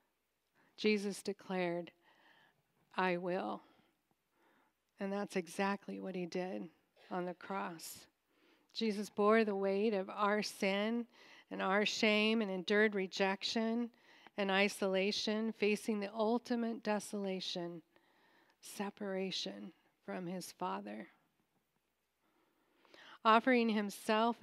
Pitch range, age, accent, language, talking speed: 185-220 Hz, 40-59, American, English, 95 wpm